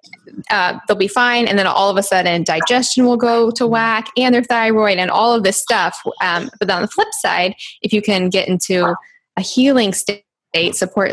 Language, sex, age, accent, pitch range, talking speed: English, female, 10-29, American, 185-240 Hz, 205 wpm